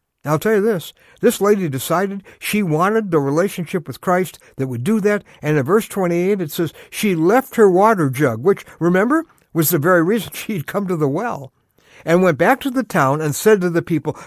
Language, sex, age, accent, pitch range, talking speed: English, male, 60-79, American, 125-180 Hz, 210 wpm